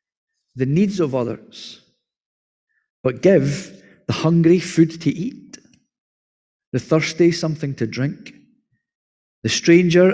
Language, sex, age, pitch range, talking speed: English, male, 50-69, 130-175 Hz, 105 wpm